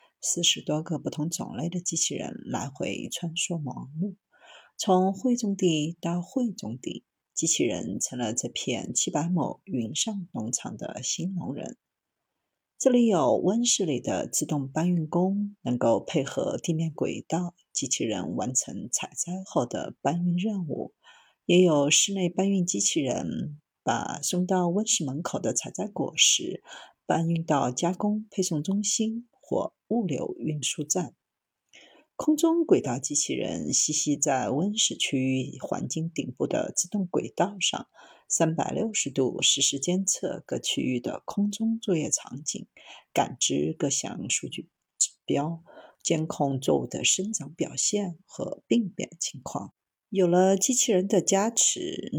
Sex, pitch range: female, 155-205 Hz